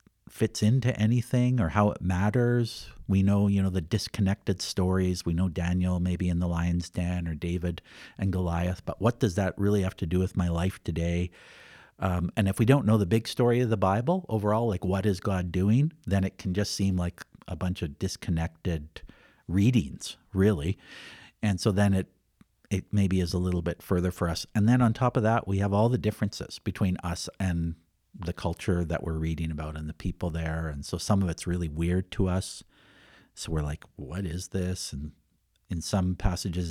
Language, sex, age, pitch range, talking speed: English, male, 50-69, 85-105 Hz, 205 wpm